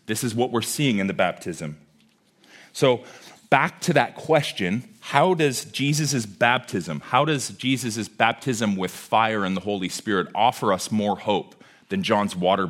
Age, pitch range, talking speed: 30-49, 105-140 Hz, 160 wpm